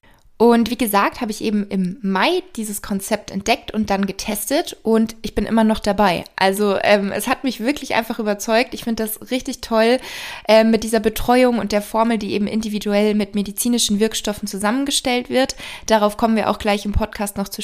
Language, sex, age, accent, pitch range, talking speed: German, female, 20-39, German, 205-245 Hz, 195 wpm